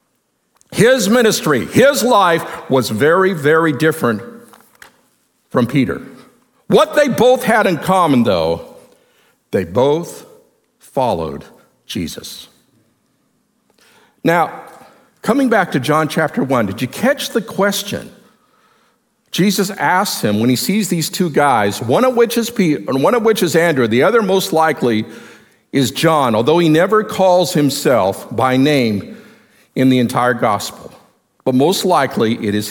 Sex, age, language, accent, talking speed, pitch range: male, 50-69, English, American, 135 wpm, 145-240 Hz